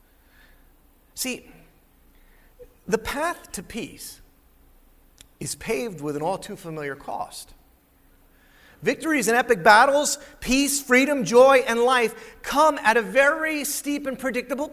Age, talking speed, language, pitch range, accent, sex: 40-59, 110 wpm, English, 175-265 Hz, American, male